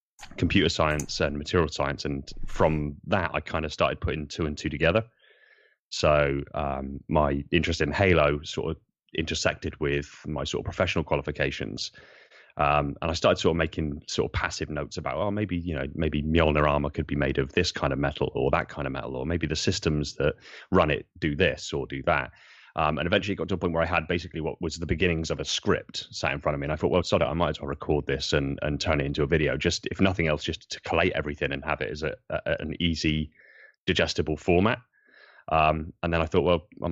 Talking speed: 230 wpm